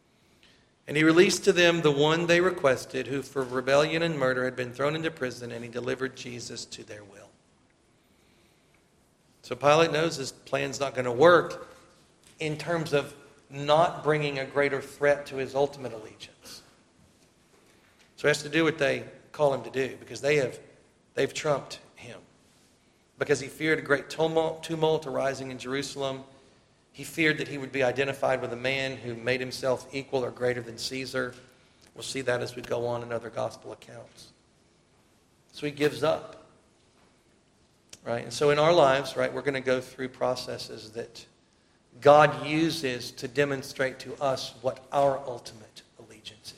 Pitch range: 125-150 Hz